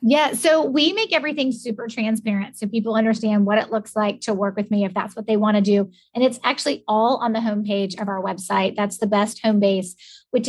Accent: American